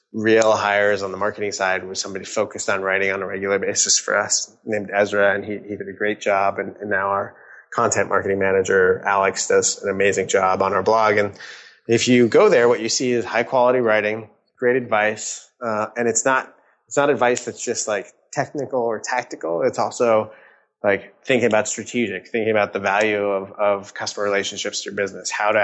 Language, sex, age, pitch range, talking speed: English, male, 20-39, 100-115 Hz, 205 wpm